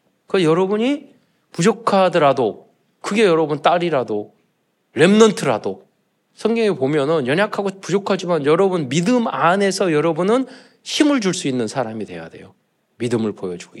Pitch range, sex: 140-215 Hz, male